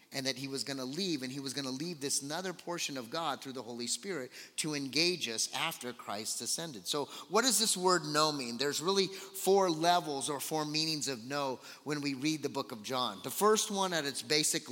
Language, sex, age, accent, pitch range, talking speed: English, male, 30-49, American, 135-170 Hz, 230 wpm